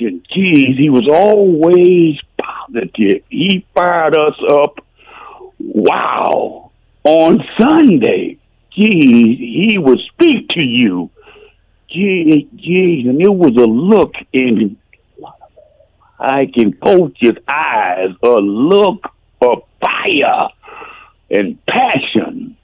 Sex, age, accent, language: male, 60-79, American, English